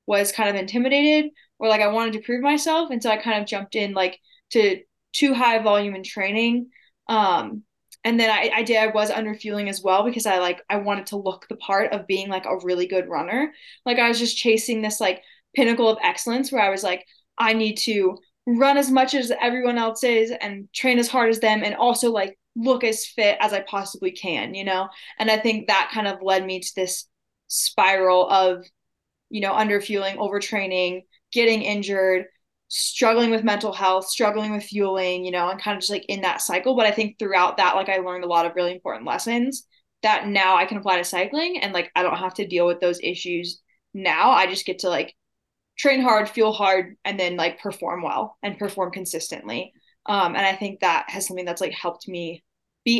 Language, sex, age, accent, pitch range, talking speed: English, female, 10-29, American, 185-230 Hz, 215 wpm